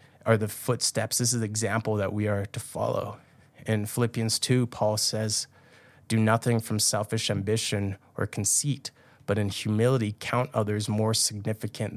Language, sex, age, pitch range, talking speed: English, male, 20-39, 105-120 Hz, 155 wpm